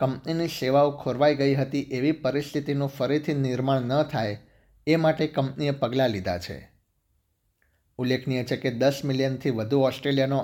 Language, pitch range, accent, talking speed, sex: Gujarati, 115-145 Hz, native, 140 wpm, male